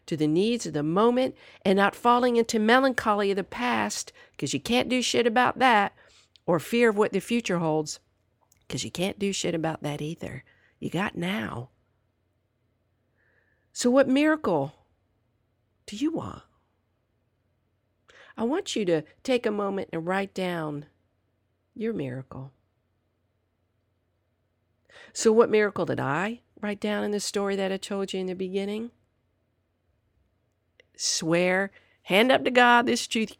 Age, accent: 50-69, American